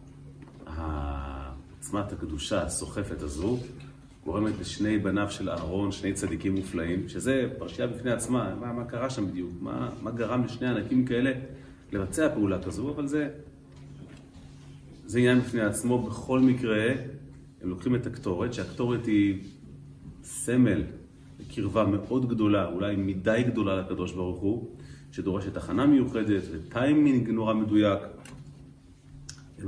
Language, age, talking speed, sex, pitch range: Hebrew, 30-49, 125 wpm, male, 95-125 Hz